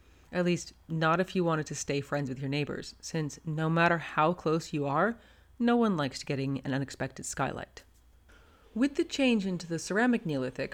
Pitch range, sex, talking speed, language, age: 135-200 Hz, female, 185 wpm, English, 30-49